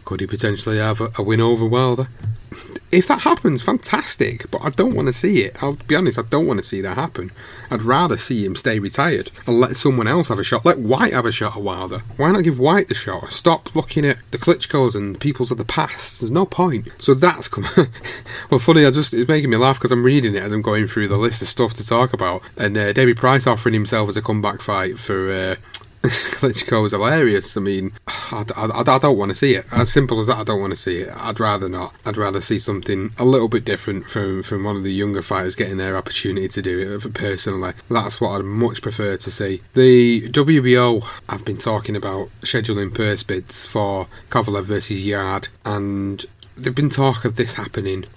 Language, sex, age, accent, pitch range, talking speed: English, male, 30-49, British, 100-125 Hz, 230 wpm